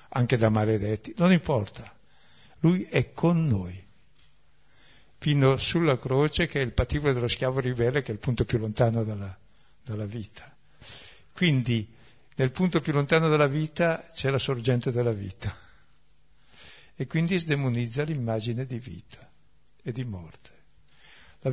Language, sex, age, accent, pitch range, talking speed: Italian, male, 60-79, native, 110-140 Hz, 140 wpm